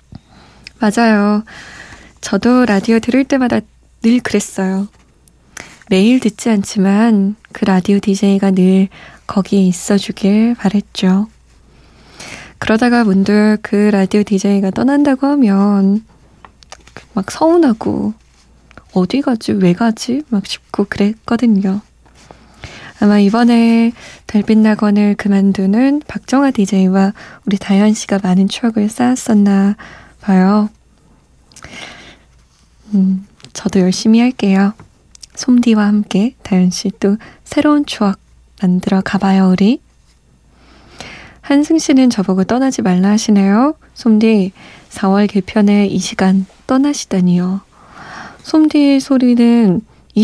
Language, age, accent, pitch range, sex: Korean, 20-39, native, 195-235 Hz, female